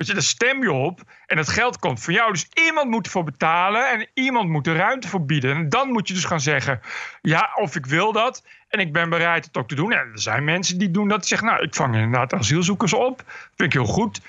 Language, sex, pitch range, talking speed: Dutch, male, 160-225 Hz, 260 wpm